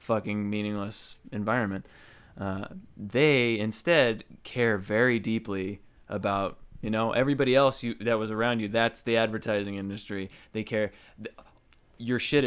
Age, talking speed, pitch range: 20-39, 130 wpm, 105-125 Hz